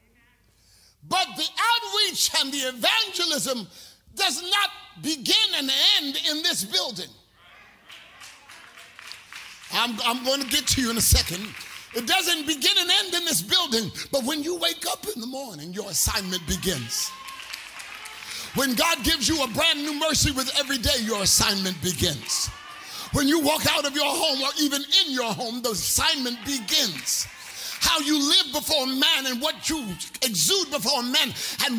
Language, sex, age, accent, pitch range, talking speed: English, male, 50-69, American, 225-315 Hz, 160 wpm